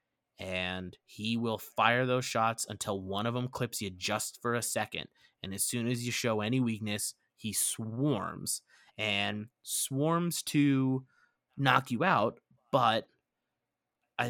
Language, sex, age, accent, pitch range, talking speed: English, male, 20-39, American, 105-125 Hz, 145 wpm